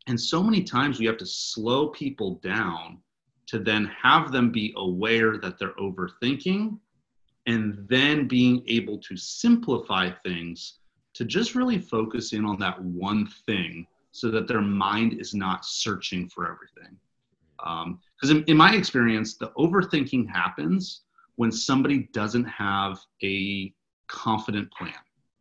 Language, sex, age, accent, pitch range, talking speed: English, male, 30-49, American, 100-135 Hz, 140 wpm